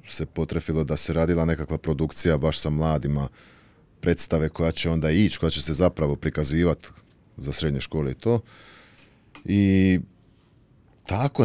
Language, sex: Croatian, male